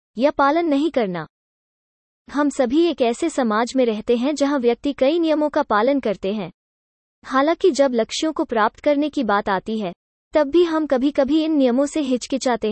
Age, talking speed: 20-39, 180 wpm